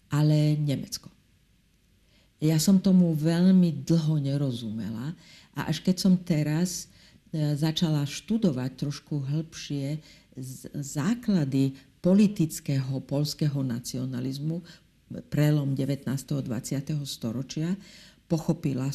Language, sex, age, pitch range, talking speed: Slovak, female, 50-69, 135-180 Hz, 85 wpm